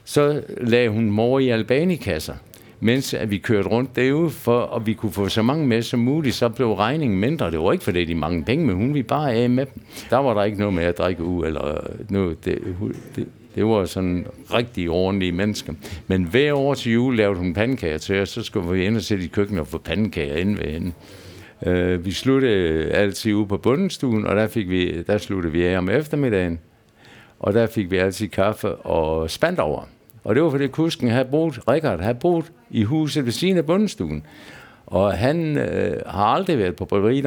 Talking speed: 205 wpm